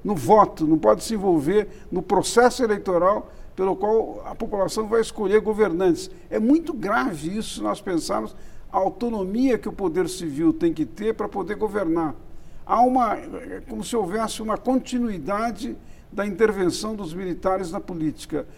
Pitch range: 190-245 Hz